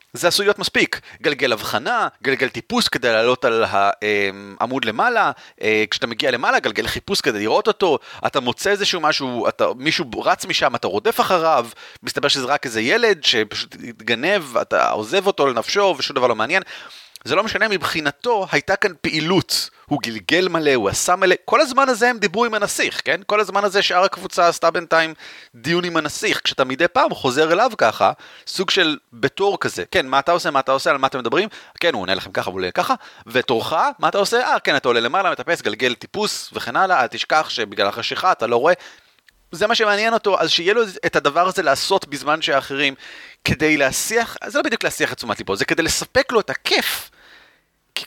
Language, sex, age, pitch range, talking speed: Hebrew, male, 30-49, 135-205 Hz, 160 wpm